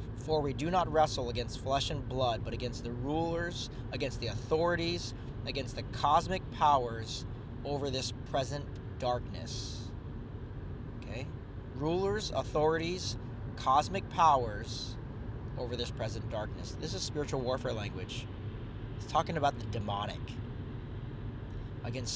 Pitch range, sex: 115-140 Hz, male